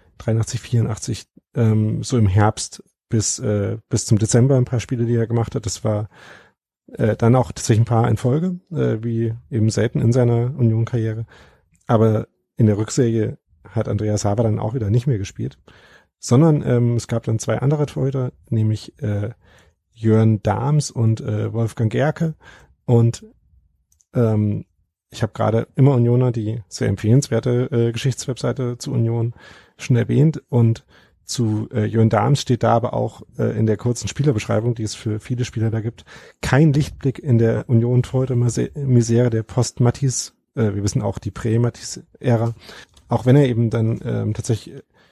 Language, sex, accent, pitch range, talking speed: German, male, German, 110-125 Hz, 165 wpm